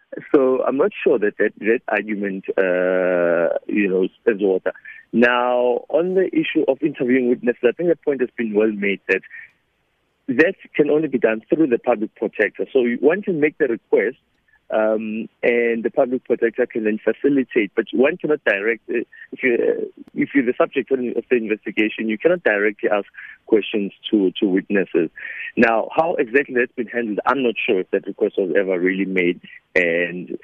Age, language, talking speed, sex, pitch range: 50-69, English, 185 wpm, male, 110-165 Hz